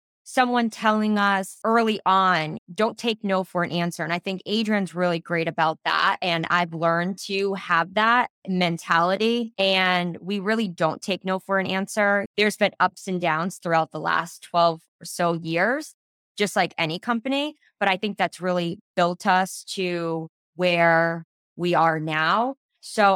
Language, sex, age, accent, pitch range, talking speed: English, female, 20-39, American, 165-190 Hz, 165 wpm